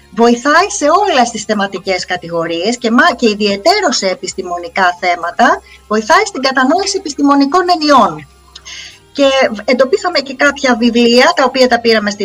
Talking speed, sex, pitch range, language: 125 wpm, female, 215-305 Hz, Greek